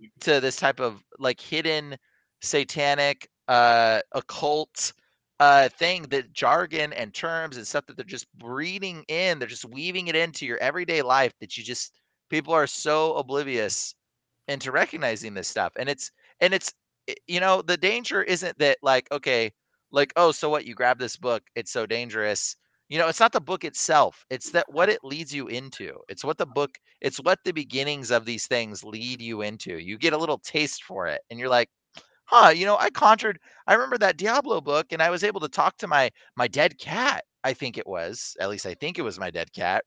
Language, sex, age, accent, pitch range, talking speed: English, male, 30-49, American, 130-185 Hz, 205 wpm